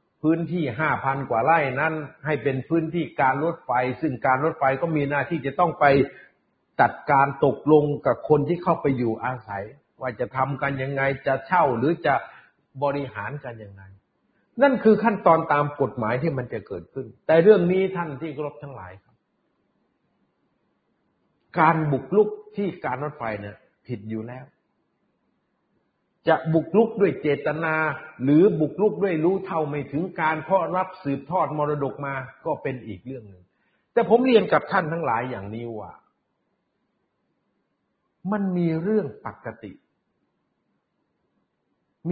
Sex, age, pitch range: male, 60-79, 130-170 Hz